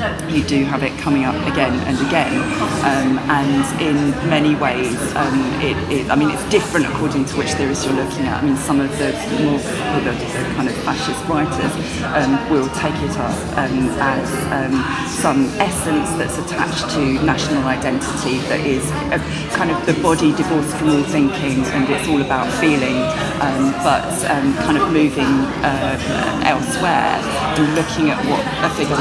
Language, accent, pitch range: Japanese, British, 140-155 Hz